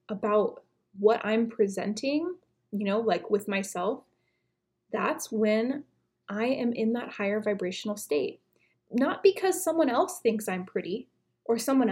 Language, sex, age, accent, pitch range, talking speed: English, female, 20-39, American, 210-270 Hz, 135 wpm